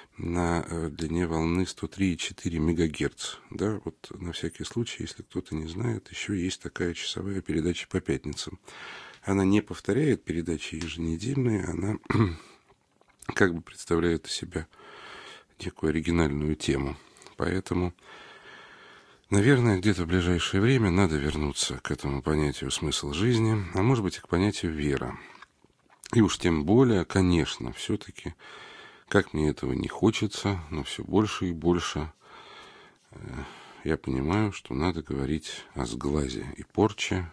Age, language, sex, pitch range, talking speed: 40-59, Russian, male, 75-95 Hz, 130 wpm